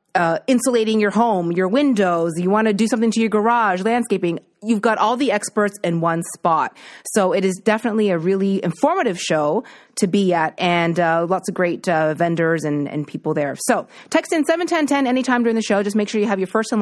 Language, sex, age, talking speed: English, female, 30-49, 220 wpm